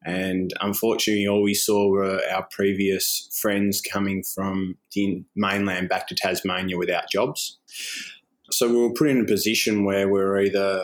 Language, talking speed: English, 160 wpm